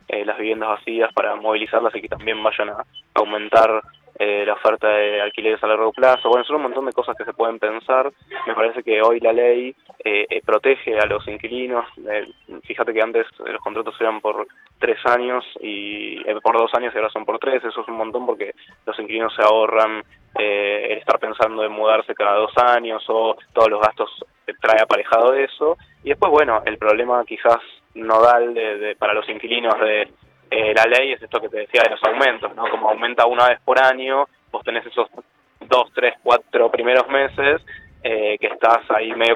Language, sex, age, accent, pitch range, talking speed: Spanish, male, 20-39, Argentinian, 110-130 Hz, 200 wpm